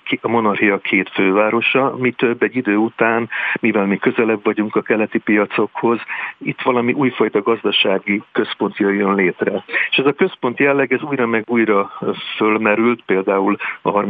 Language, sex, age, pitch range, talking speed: Hungarian, male, 50-69, 105-130 Hz, 150 wpm